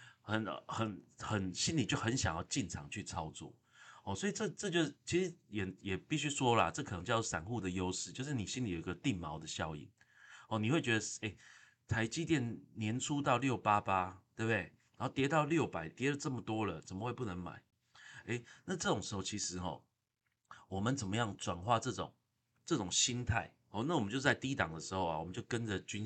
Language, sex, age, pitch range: Chinese, male, 30-49, 95-125 Hz